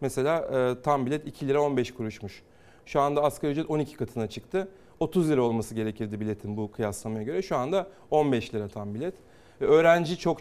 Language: Turkish